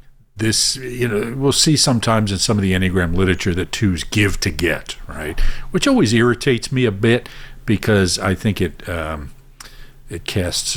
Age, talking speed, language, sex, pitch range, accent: 50-69, 175 wpm, English, male, 85-125 Hz, American